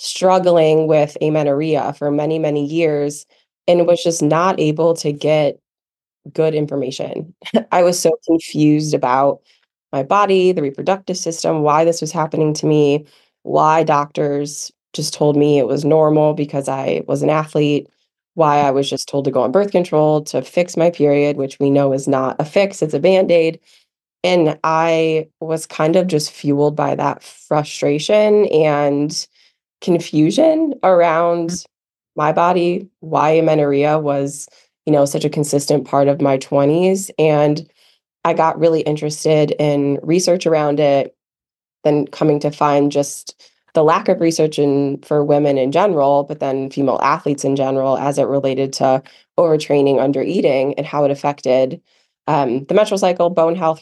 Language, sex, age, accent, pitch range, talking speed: English, female, 20-39, American, 145-165 Hz, 160 wpm